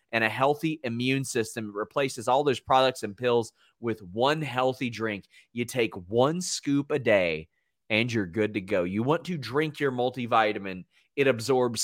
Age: 30-49